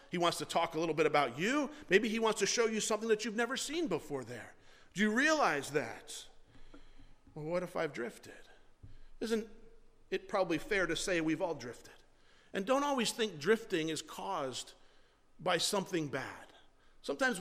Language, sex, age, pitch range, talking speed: English, male, 50-69, 175-230 Hz, 175 wpm